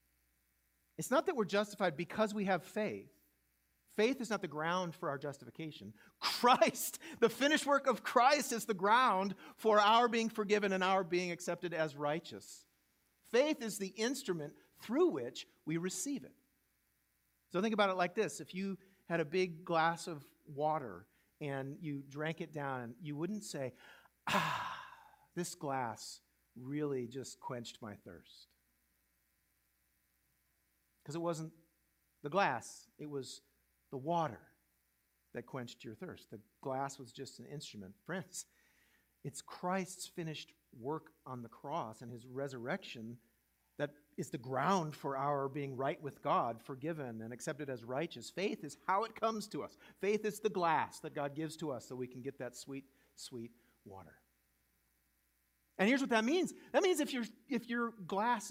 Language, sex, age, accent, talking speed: English, male, 50-69, American, 160 wpm